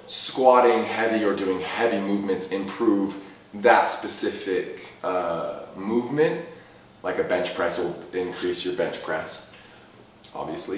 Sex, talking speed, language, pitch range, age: male, 115 wpm, English, 100-135 Hz, 20-39